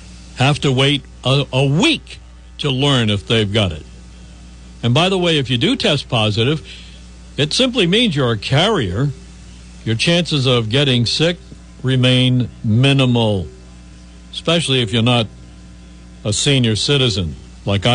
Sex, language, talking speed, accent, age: male, English, 140 wpm, American, 60-79